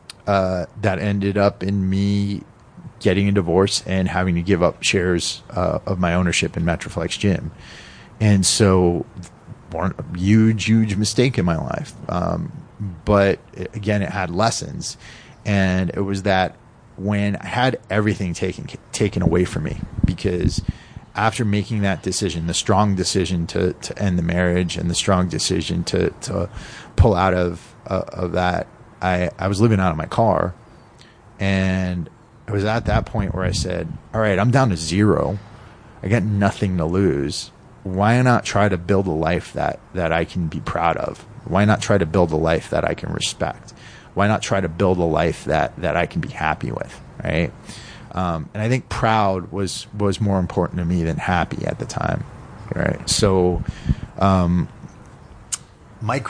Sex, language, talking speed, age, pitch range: male, English, 175 wpm, 30-49, 90-110 Hz